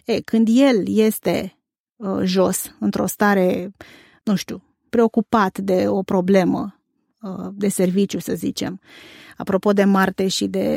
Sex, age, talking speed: female, 30-49, 115 wpm